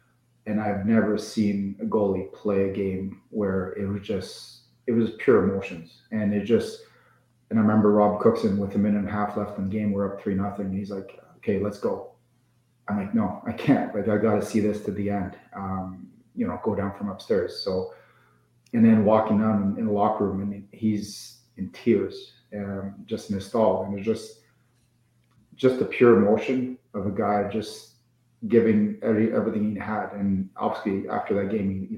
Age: 30-49